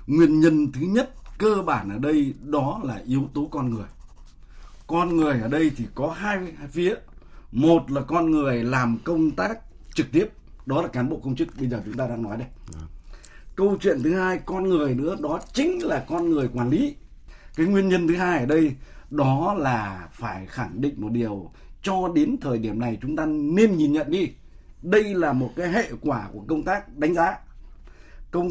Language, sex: Vietnamese, male